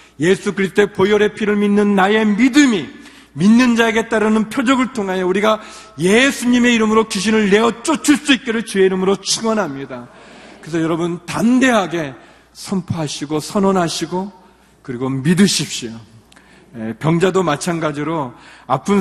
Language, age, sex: Korean, 40-59, male